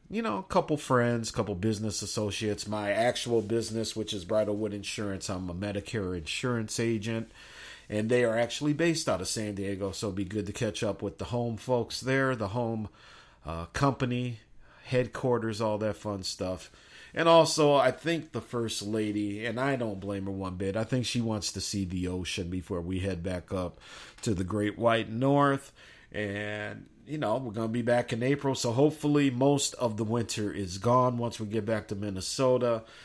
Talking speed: 195 wpm